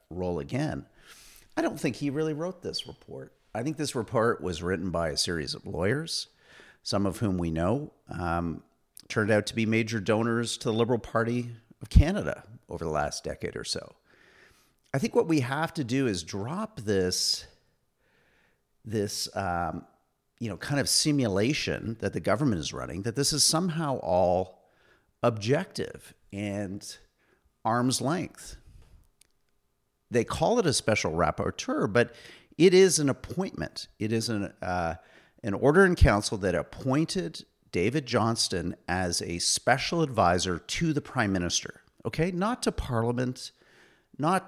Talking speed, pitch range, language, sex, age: 150 wpm, 100-150 Hz, English, male, 50-69